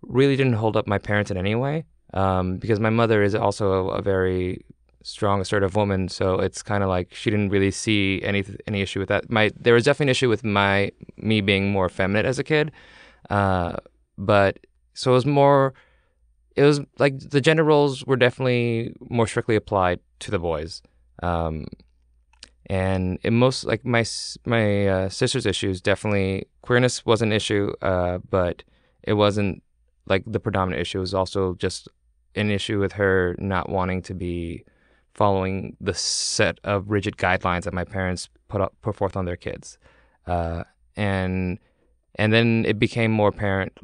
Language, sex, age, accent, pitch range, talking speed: English, male, 20-39, American, 90-110 Hz, 175 wpm